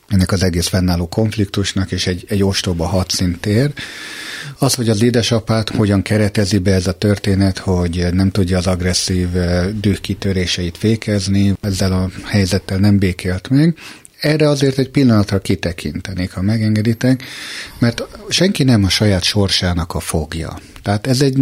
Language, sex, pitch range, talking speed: Hungarian, male, 90-115 Hz, 150 wpm